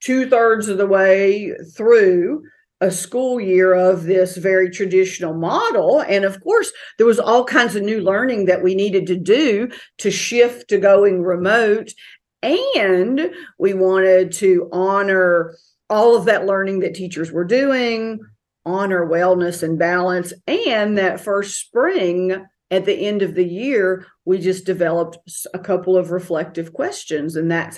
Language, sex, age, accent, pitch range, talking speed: English, female, 50-69, American, 180-225 Hz, 150 wpm